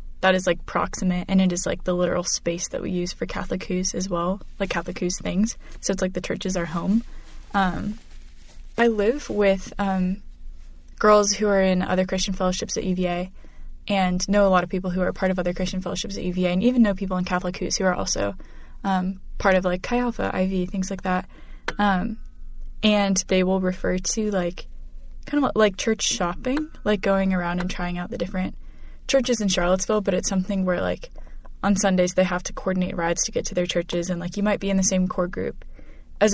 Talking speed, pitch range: 215 wpm, 175-200 Hz